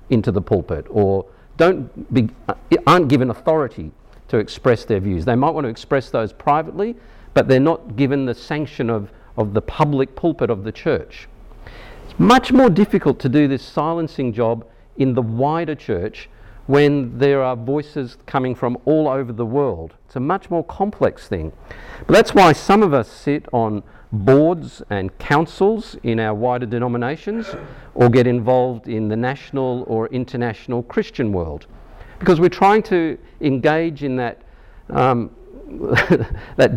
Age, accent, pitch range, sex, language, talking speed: 50-69, Australian, 115-160 Hz, male, English, 160 wpm